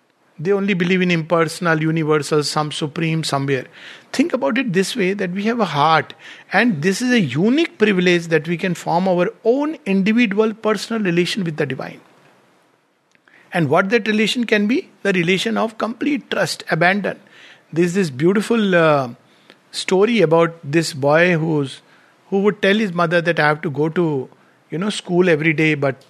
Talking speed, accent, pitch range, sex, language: 175 wpm, Indian, 155-215 Hz, male, English